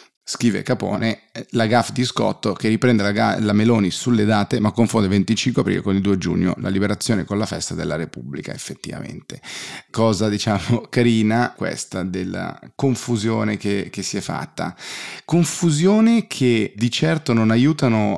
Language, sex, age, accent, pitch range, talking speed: Italian, male, 30-49, native, 100-125 Hz, 155 wpm